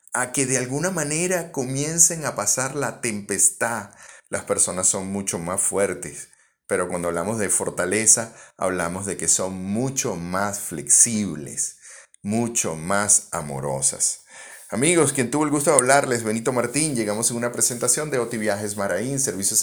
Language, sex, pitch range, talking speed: Spanish, male, 100-140 Hz, 150 wpm